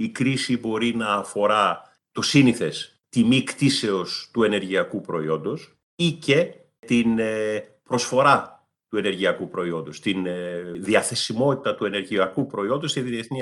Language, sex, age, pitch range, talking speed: Greek, male, 40-59, 115-170 Hz, 115 wpm